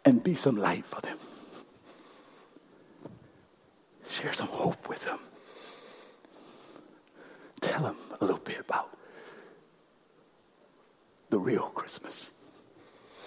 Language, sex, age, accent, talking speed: English, male, 60-79, American, 90 wpm